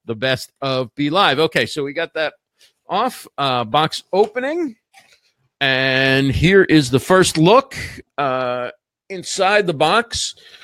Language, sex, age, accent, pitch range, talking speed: English, male, 50-69, American, 130-180 Hz, 135 wpm